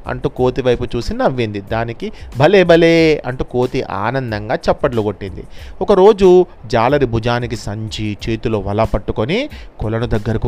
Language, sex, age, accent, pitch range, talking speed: Telugu, male, 30-49, native, 115-165 Hz, 120 wpm